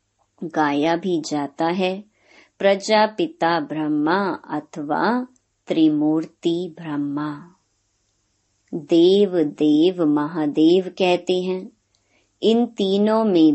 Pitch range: 150-190 Hz